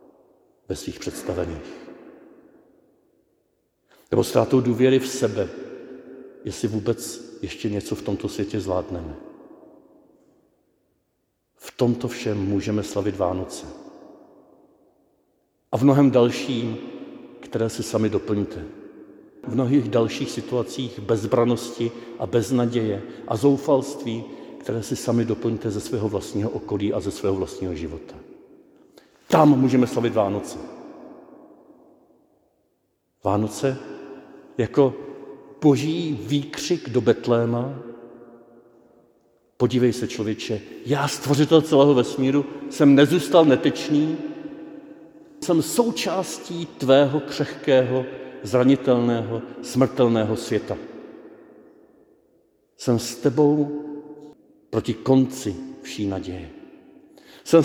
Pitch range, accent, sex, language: 115-150 Hz, native, male, Czech